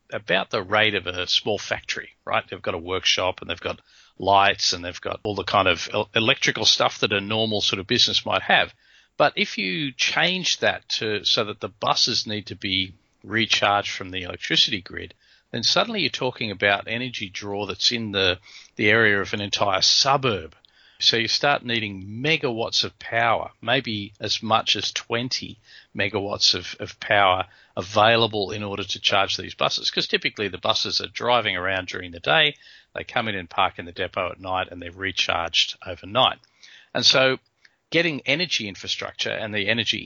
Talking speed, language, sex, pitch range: 185 wpm, English, male, 100-120 Hz